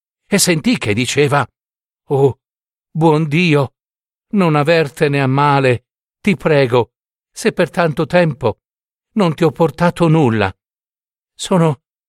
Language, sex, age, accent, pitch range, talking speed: Italian, male, 50-69, native, 125-175 Hz, 115 wpm